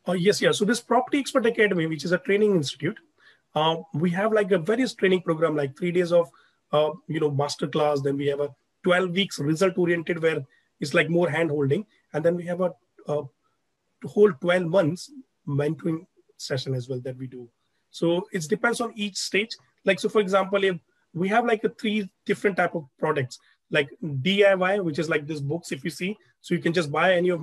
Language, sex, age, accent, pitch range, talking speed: English, male, 30-49, Indian, 150-195 Hz, 210 wpm